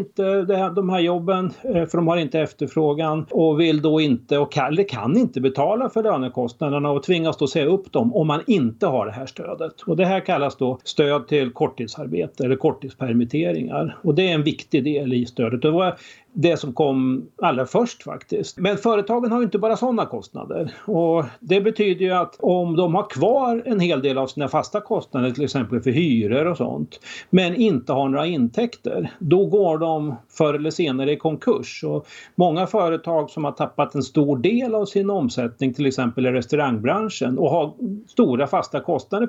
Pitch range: 135-200 Hz